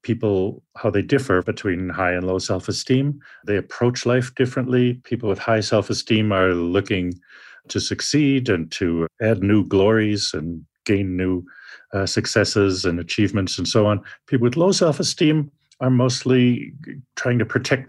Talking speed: 150 wpm